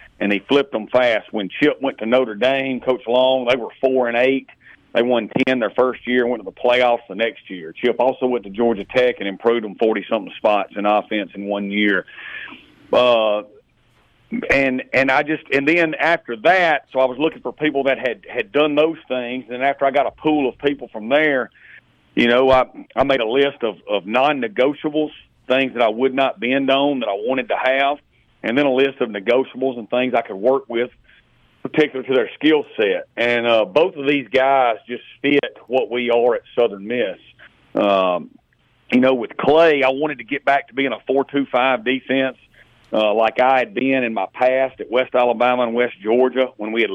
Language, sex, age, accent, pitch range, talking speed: English, male, 40-59, American, 120-135 Hz, 215 wpm